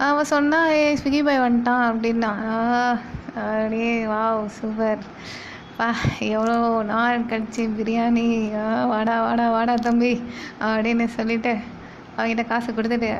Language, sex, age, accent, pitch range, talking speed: Tamil, female, 20-39, native, 225-270 Hz, 115 wpm